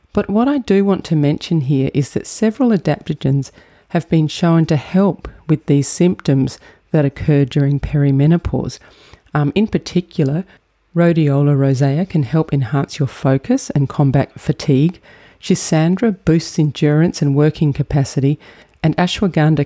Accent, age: Australian, 40-59